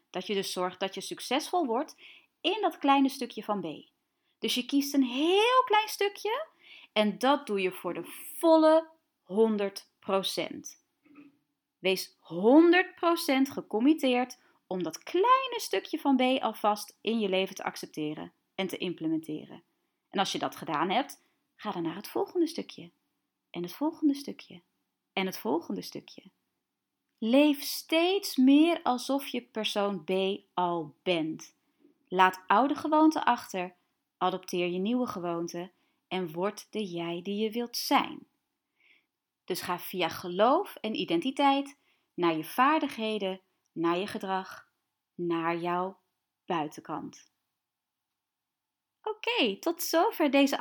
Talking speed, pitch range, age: 130 wpm, 185-300 Hz, 30-49